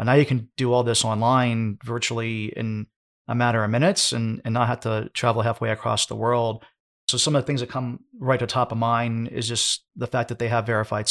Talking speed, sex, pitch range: 230 wpm, male, 115-125 Hz